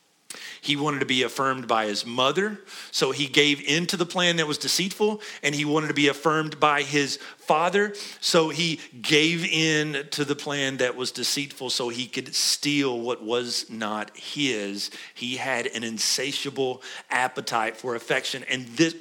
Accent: American